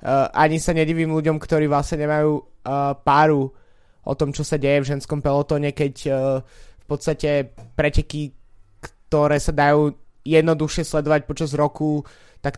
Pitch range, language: 135-155 Hz, Slovak